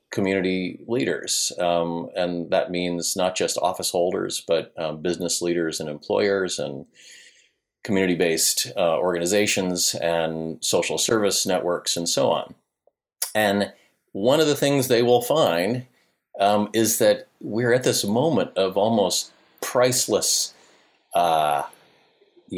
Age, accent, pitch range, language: 30-49, American, 85-110 Hz, English